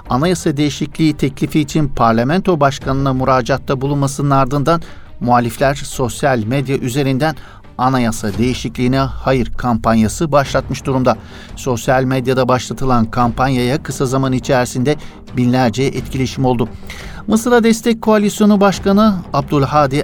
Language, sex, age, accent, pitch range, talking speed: Turkish, male, 60-79, native, 125-165 Hz, 100 wpm